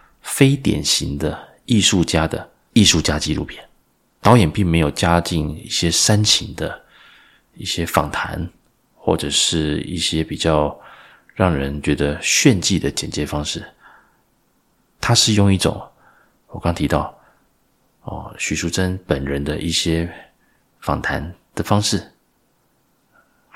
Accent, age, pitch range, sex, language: native, 30-49, 80-100 Hz, male, Chinese